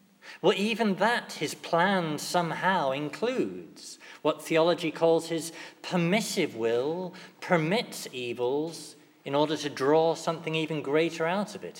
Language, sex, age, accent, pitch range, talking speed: English, male, 40-59, British, 140-180 Hz, 125 wpm